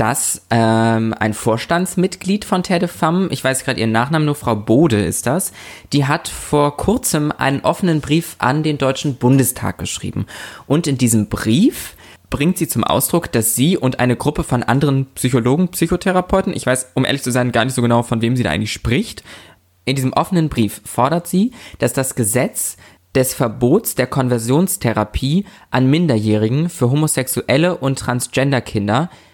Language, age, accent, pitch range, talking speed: German, 20-39, German, 110-150 Hz, 165 wpm